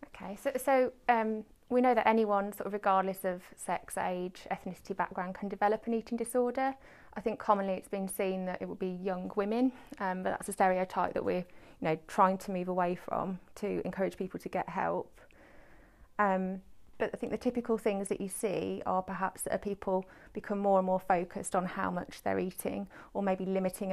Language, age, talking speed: English, 30-49, 200 wpm